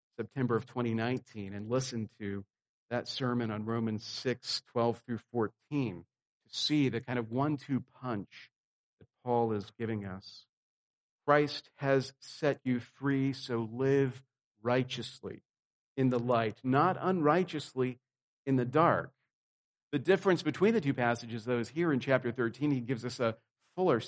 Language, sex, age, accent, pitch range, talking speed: English, male, 50-69, American, 115-140 Hz, 145 wpm